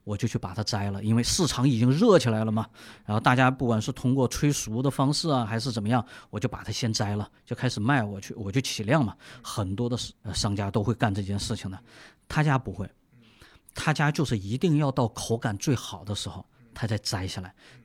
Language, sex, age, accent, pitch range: Chinese, male, 30-49, native, 110-145 Hz